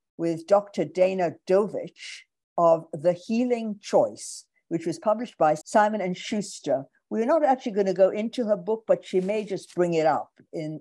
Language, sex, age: English, female, 60-79